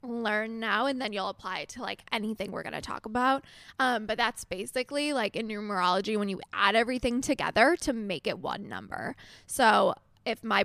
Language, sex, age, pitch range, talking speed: English, female, 10-29, 205-265 Hz, 195 wpm